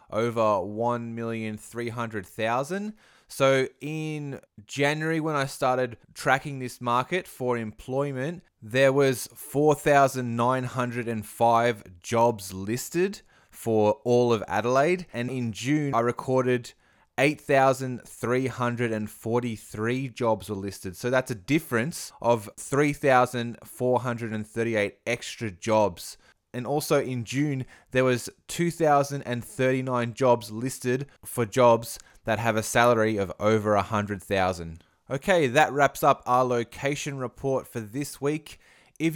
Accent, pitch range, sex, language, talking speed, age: Australian, 115-145 Hz, male, English, 105 wpm, 20-39